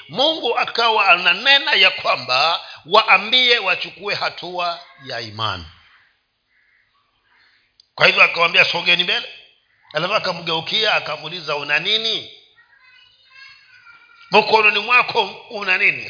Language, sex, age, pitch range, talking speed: Swahili, male, 50-69, 165-240 Hz, 90 wpm